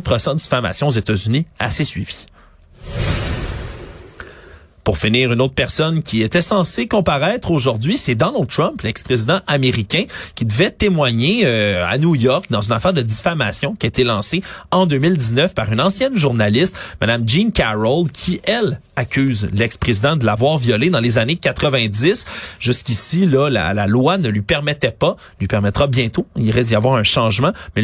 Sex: male